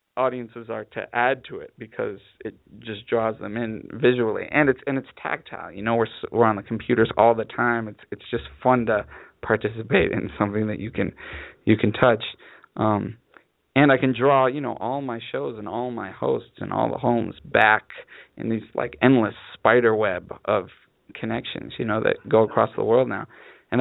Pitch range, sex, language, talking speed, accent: 105-125 Hz, male, English, 195 wpm, American